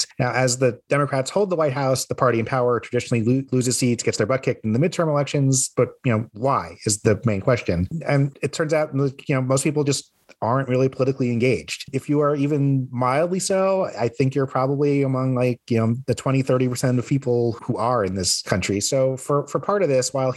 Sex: male